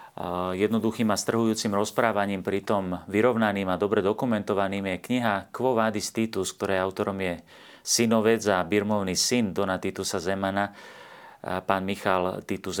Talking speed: 130 wpm